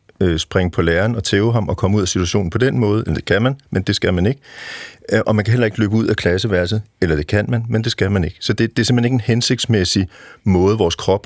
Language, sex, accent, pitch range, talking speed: Danish, male, native, 95-120 Hz, 275 wpm